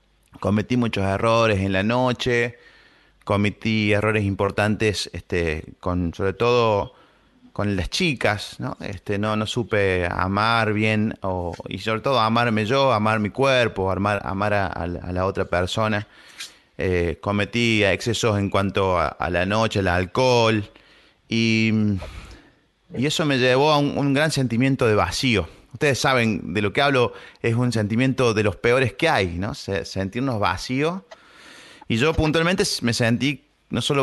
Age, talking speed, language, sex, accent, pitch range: 30-49, 150 wpm, Spanish, male, Argentinian, 100-130 Hz